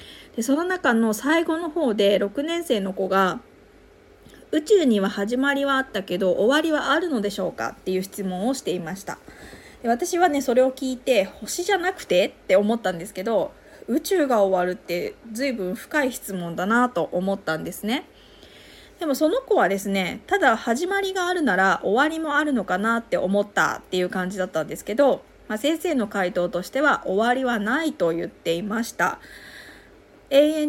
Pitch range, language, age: 190-280 Hz, Japanese, 20-39